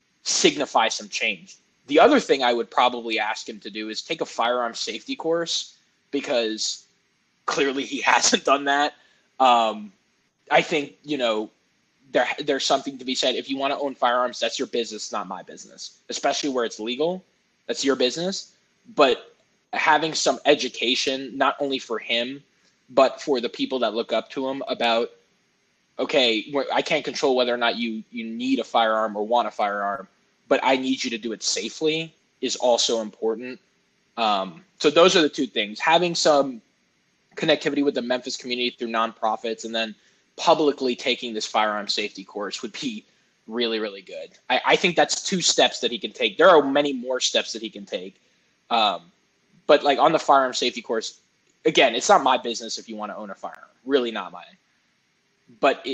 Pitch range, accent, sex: 115-145 Hz, American, male